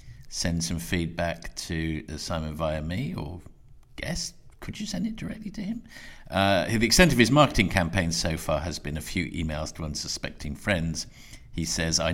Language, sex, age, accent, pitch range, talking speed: English, male, 50-69, British, 80-100 Hz, 180 wpm